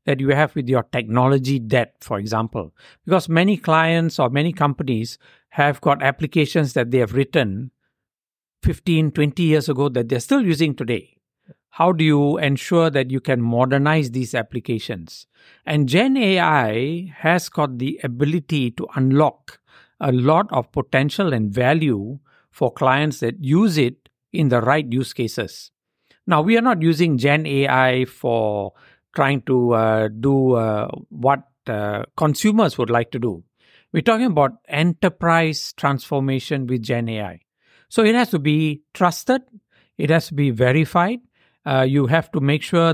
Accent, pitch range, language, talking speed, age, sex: Indian, 125-165 Hz, English, 155 wpm, 60-79, male